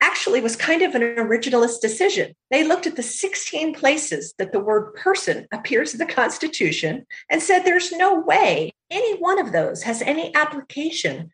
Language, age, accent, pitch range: English, 50-69, American, 225-370 Hz